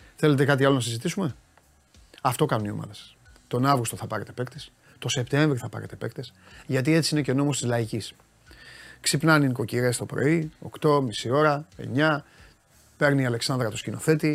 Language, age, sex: Greek, 30-49, male